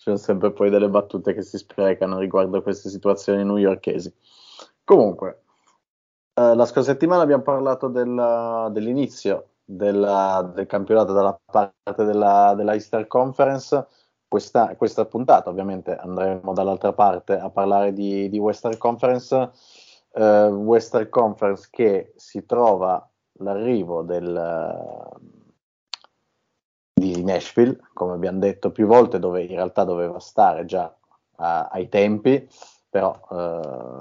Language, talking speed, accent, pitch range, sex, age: Italian, 130 wpm, native, 95-110 Hz, male, 30-49